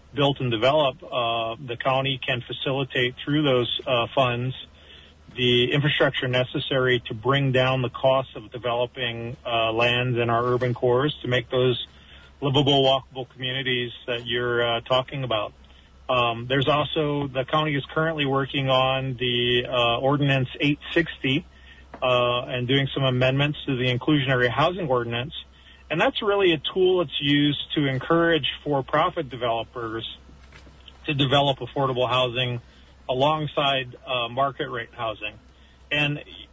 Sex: male